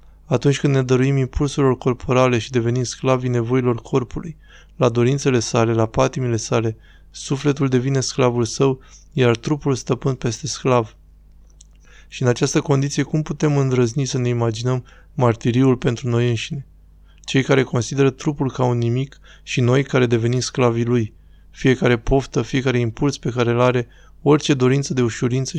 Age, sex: 20-39, male